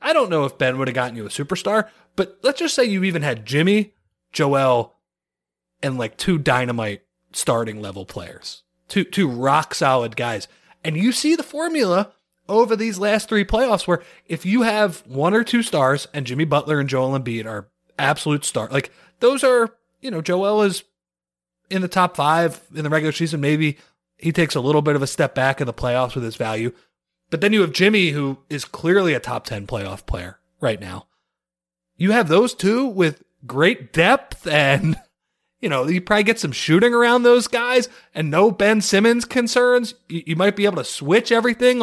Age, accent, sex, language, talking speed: 30-49, American, male, English, 195 wpm